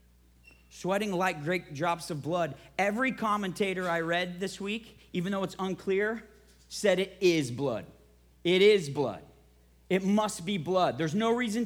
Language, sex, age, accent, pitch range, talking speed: English, male, 40-59, American, 175-275 Hz, 155 wpm